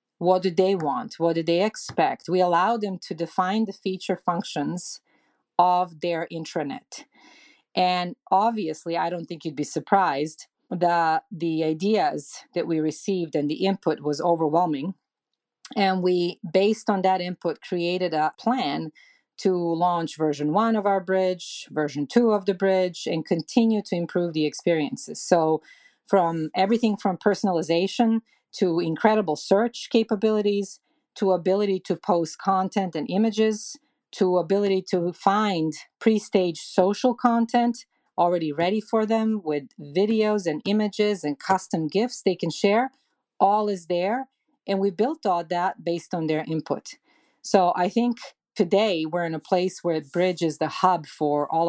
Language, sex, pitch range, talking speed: English, female, 170-215 Hz, 150 wpm